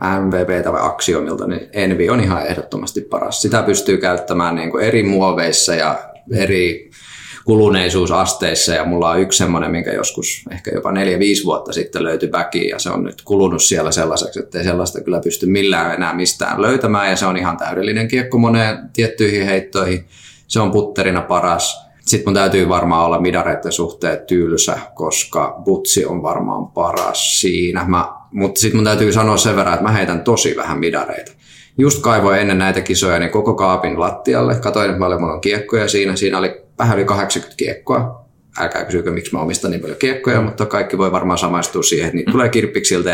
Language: Finnish